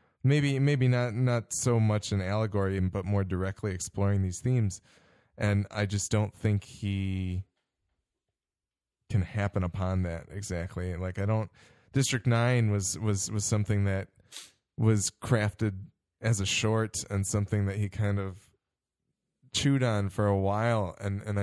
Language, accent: English, American